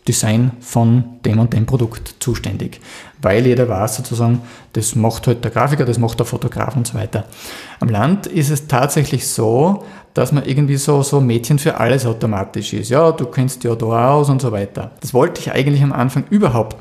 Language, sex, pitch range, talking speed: German, male, 120-145 Hz, 200 wpm